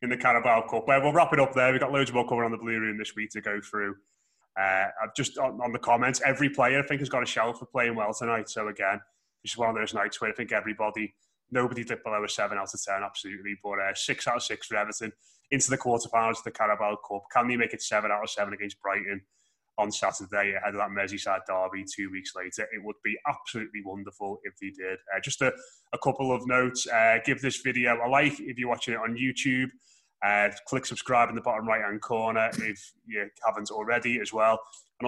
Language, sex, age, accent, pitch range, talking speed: English, male, 20-39, British, 100-125 Hz, 240 wpm